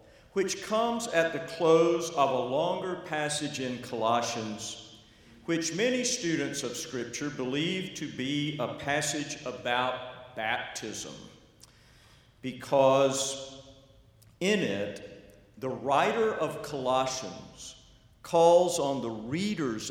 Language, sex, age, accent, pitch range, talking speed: English, male, 50-69, American, 125-160 Hz, 100 wpm